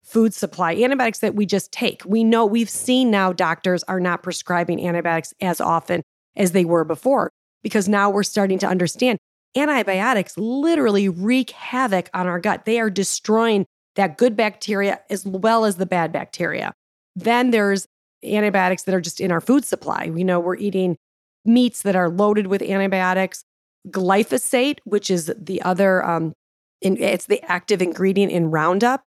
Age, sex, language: 30-49, female, English